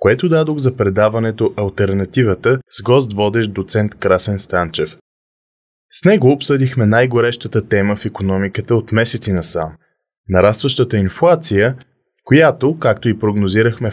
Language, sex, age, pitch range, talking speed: Bulgarian, male, 20-39, 100-135 Hz, 115 wpm